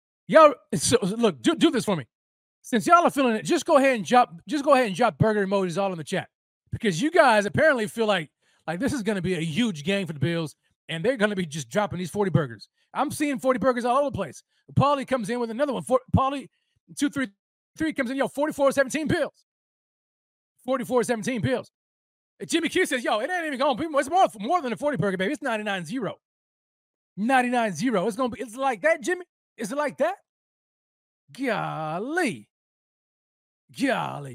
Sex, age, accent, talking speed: male, 30-49, American, 210 wpm